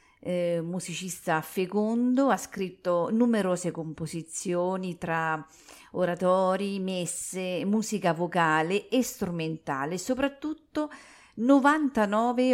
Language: Italian